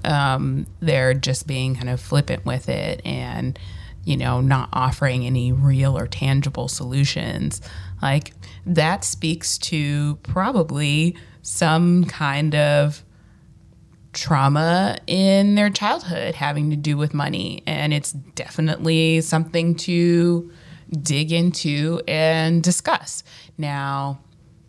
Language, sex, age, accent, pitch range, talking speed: English, female, 20-39, American, 140-175 Hz, 110 wpm